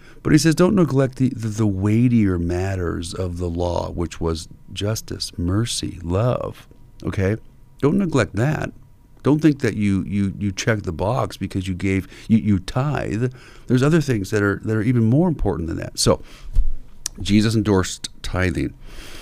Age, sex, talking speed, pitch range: 50-69, male, 160 wpm, 95-120 Hz